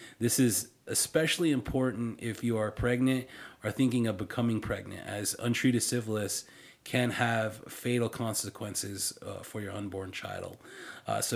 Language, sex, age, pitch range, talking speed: English, male, 30-49, 105-130 Hz, 145 wpm